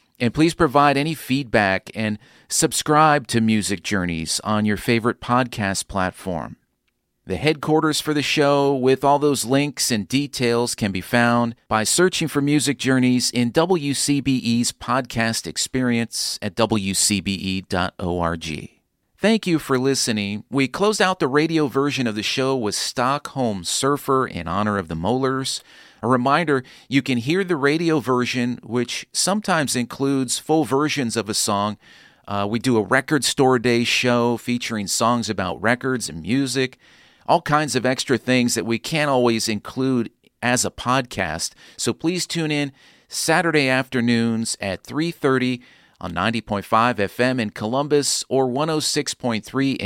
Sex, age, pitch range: male, 40-59, 110-145 Hz